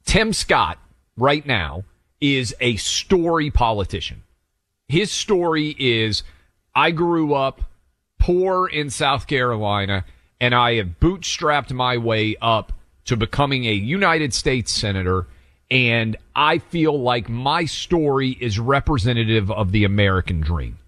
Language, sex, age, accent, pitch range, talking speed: English, male, 40-59, American, 100-140 Hz, 125 wpm